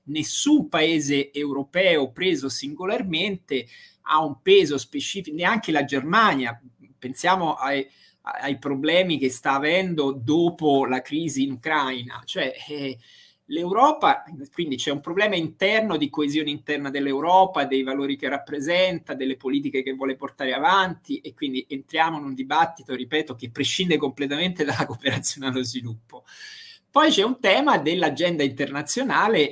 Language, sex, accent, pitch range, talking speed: Italian, male, native, 135-180 Hz, 135 wpm